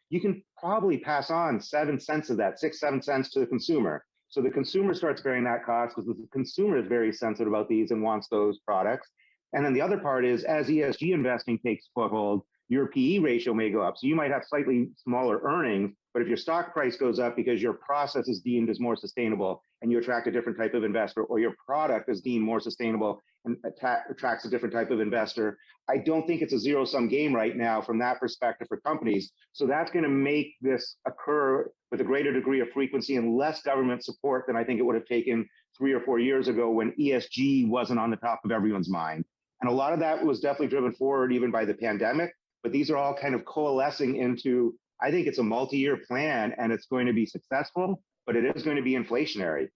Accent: American